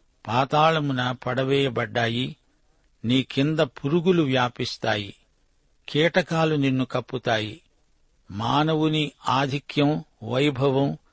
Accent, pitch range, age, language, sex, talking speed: native, 125-150 Hz, 60-79, Telugu, male, 65 wpm